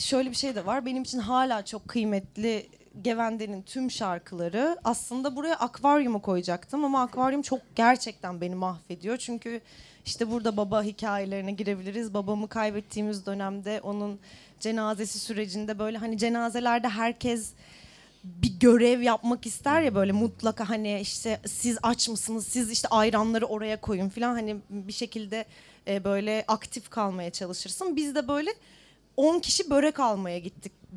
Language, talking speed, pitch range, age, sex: Turkish, 140 wpm, 200-245 Hz, 20-39, female